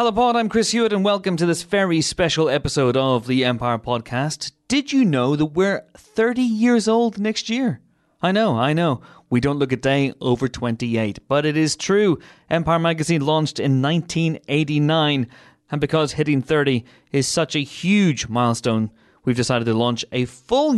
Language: English